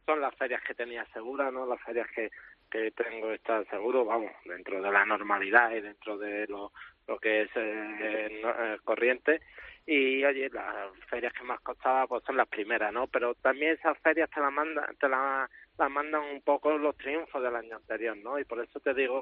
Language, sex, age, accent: Spanish, male, 20-39, Spanish